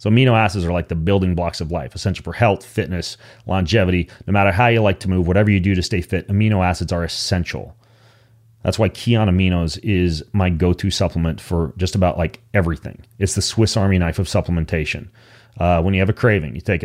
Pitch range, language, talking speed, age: 90-110 Hz, English, 215 wpm, 30-49